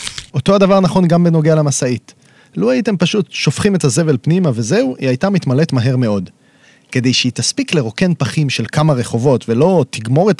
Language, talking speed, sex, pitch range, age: Hebrew, 175 wpm, male, 130-190 Hz, 30-49